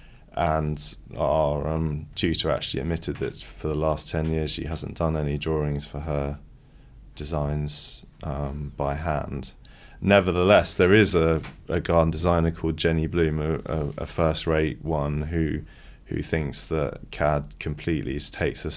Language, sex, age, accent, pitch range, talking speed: English, male, 20-39, British, 75-80 Hz, 145 wpm